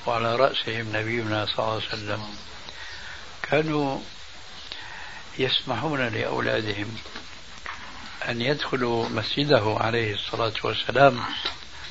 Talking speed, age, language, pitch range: 80 wpm, 60-79, Arabic, 110-135 Hz